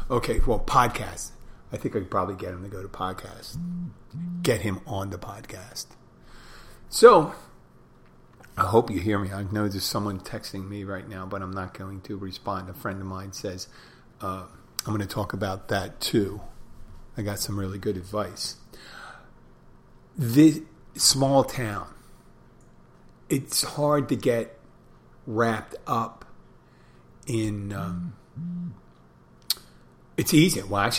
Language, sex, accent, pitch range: English, male, American, 95-135 Hz